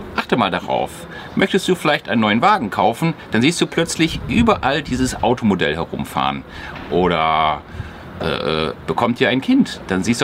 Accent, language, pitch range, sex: German, German, 100-150 Hz, male